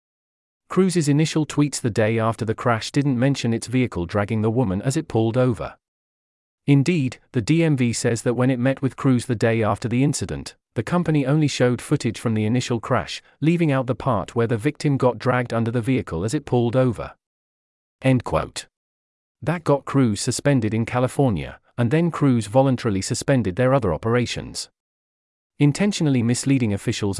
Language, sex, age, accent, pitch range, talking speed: English, male, 40-59, British, 110-140 Hz, 170 wpm